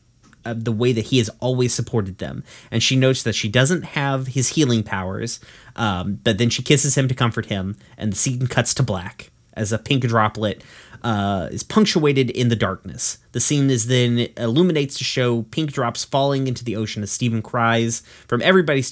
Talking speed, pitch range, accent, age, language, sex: 195 wpm, 110-130 Hz, American, 30-49, English, male